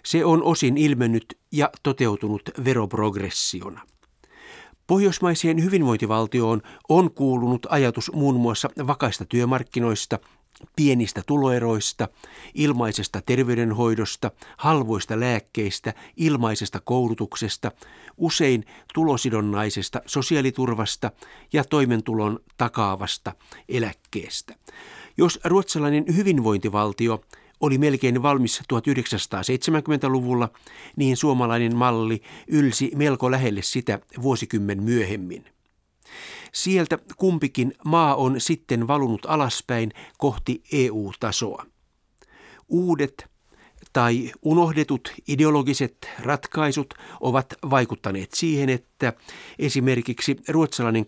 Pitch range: 110-145 Hz